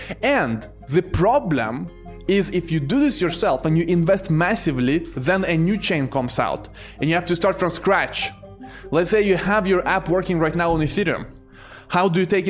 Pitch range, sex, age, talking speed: 140-180 Hz, male, 20-39, 195 wpm